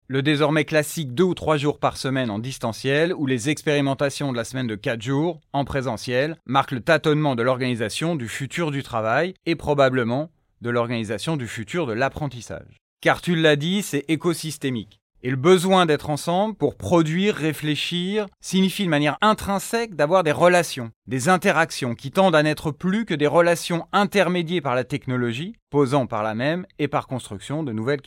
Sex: male